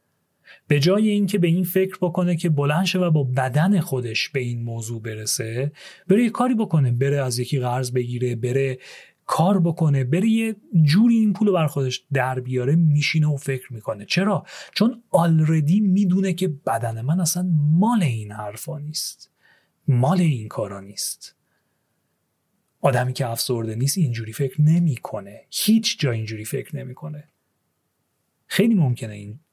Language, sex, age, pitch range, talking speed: Persian, male, 30-49, 125-180 Hz, 150 wpm